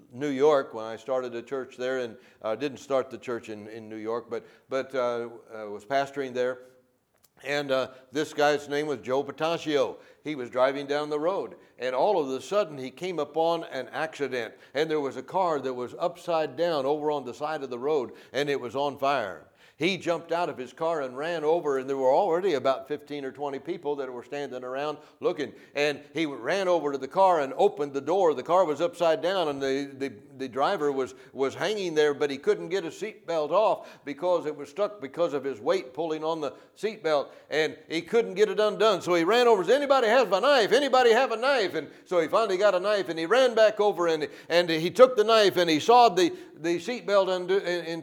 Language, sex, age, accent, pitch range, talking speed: English, male, 60-79, American, 135-190 Hz, 225 wpm